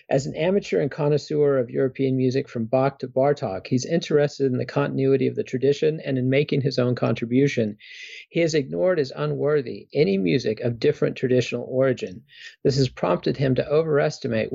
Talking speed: 175 wpm